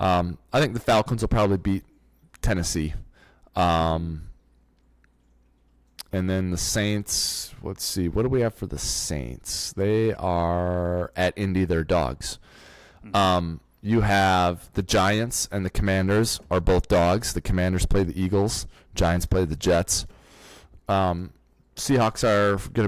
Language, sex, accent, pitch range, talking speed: English, male, American, 85-105 Hz, 140 wpm